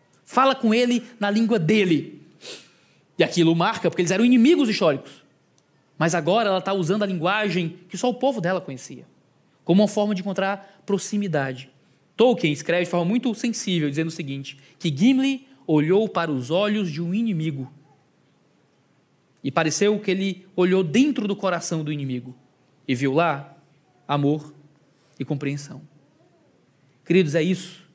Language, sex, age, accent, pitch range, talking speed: Portuguese, male, 20-39, Brazilian, 155-200 Hz, 150 wpm